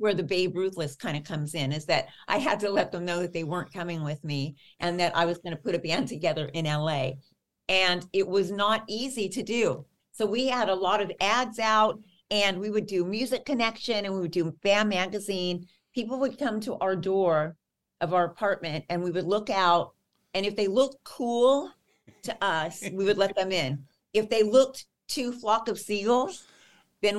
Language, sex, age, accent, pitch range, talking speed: English, female, 50-69, American, 165-215 Hz, 210 wpm